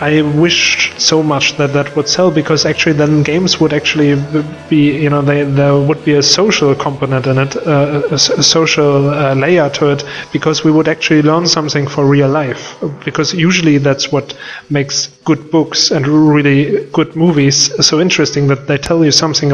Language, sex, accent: Russian, male, German